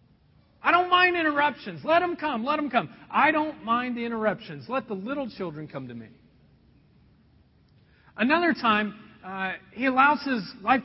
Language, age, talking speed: English, 40-59, 160 wpm